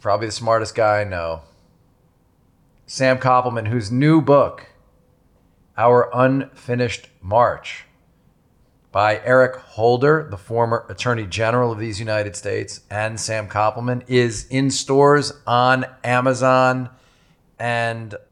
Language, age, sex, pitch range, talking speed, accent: English, 40-59, male, 100-125 Hz, 110 wpm, American